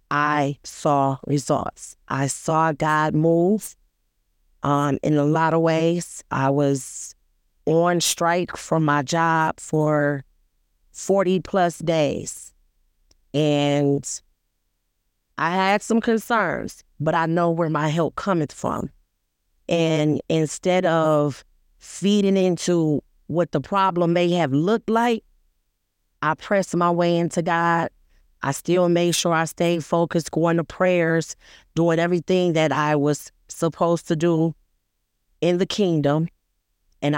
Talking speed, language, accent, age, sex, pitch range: 125 wpm, English, American, 30-49, female, 145-175 Hz